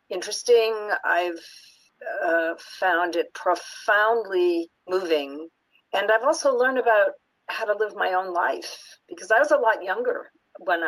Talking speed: 140 wpm